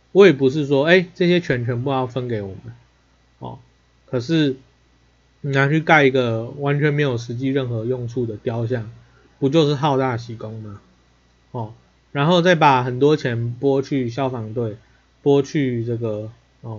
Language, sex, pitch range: Chinese, male, 115-155 Hz